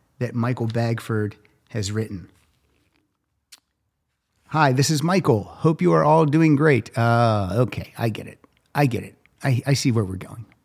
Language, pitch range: English, 110-145 Hz